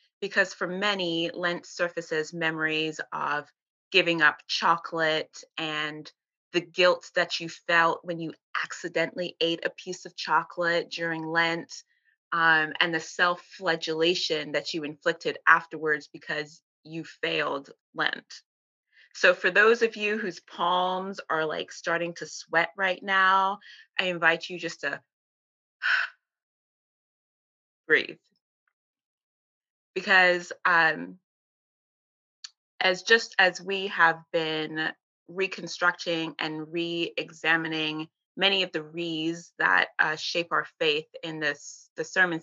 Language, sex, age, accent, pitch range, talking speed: English, female, 20-39, American, 160-185 Hz, 115 wpm